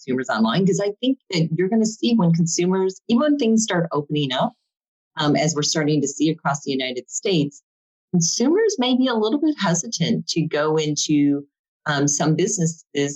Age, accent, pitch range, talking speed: 30-49, American, 140-175 Hz, 185 wpm